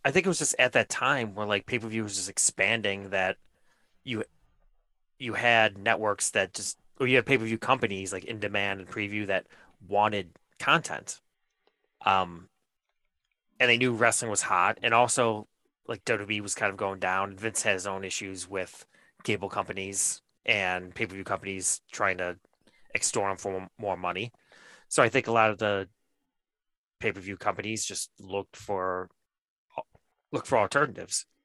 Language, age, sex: English, 30-49, male